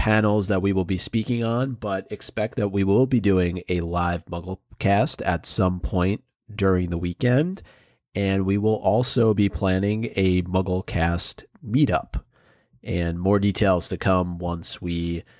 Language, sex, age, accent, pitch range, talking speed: English, male, 30-49, American, 90-115 Hz, 150 wpm